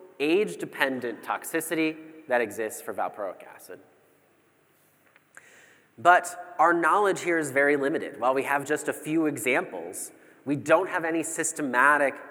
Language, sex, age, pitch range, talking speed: English, male, 30-49, 130-165 Hz, 125 wpm